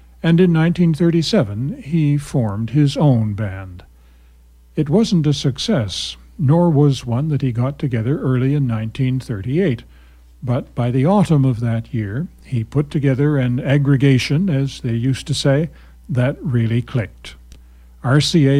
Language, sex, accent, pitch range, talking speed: English, male, American, 115-145 Hz, 140 wpm